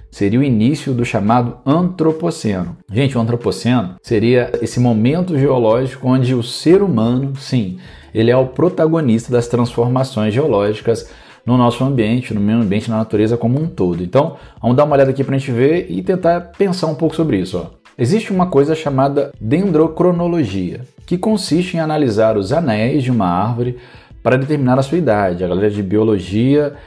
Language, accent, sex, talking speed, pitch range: Portuguese, Brazilian, male, 170 wpm, 110-155 Hz